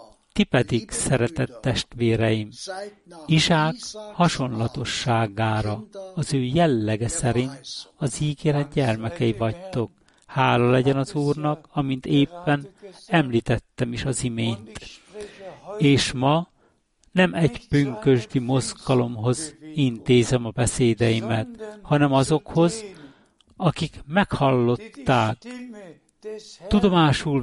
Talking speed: 85 wpm